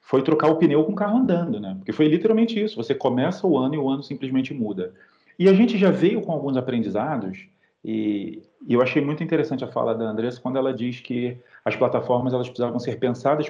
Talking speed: 220 wpm